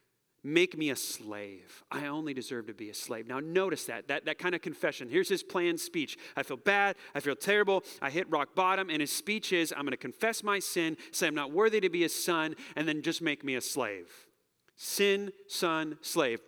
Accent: American